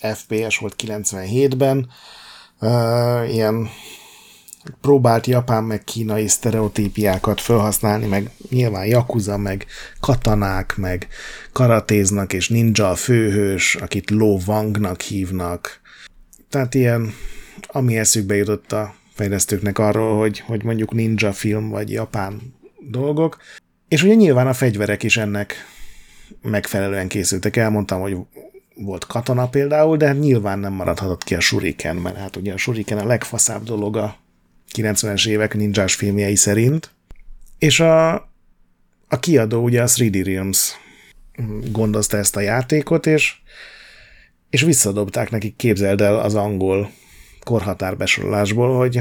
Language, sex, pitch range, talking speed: Hungarian, male, 100-120 Hz, 120 wpm